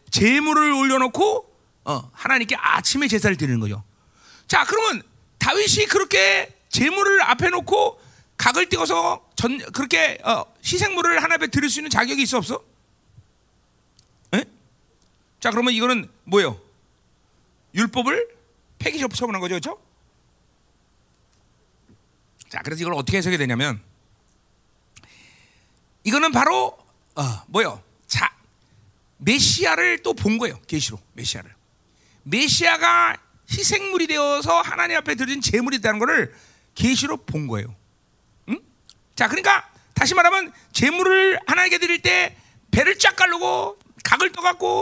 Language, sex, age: Korean, male, 40-59